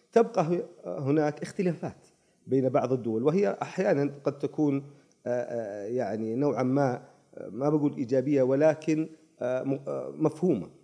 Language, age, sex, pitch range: Arabic, 40-59, male, 120-155 Hz